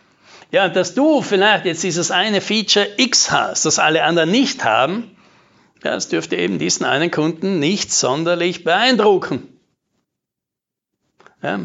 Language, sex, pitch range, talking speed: German, male, 165-215 Hz, 130 wpm